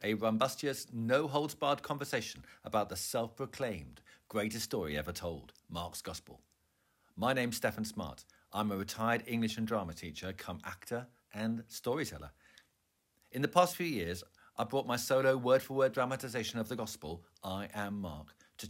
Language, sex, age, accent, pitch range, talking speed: English, male, 50-69, British, 100-130 Hz, 150 wpm